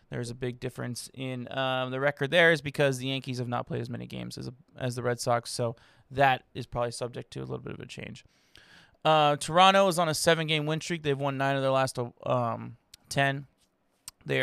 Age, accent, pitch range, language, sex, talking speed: 20-39, American, 120-150 Hz, English, male, 225 wpm